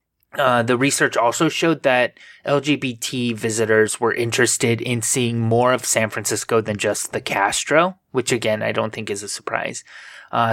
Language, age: English, 20-39